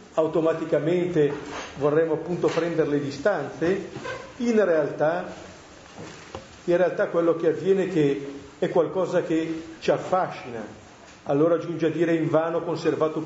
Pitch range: 145-185 Hz